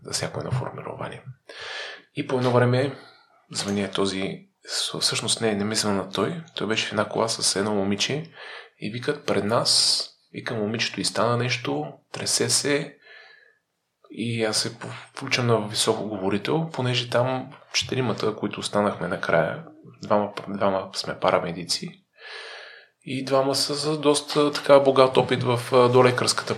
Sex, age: male, 20-39